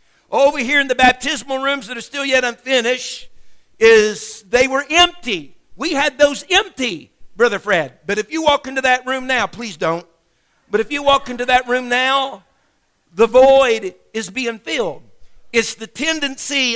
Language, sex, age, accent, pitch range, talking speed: English, male, 50-69, American, 215-260 Hz, 170 wpm